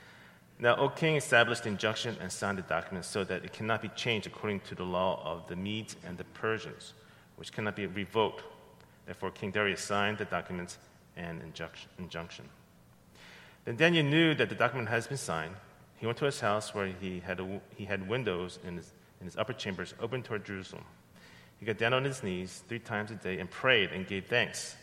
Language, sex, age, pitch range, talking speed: English, male, 40-59, 95-115 Hz, 200 wpm